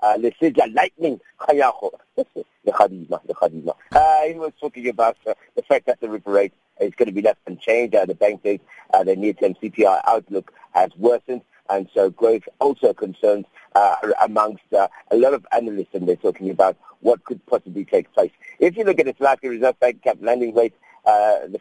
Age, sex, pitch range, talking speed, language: 50-69, male, 110-175 Hz, 195 wpm, English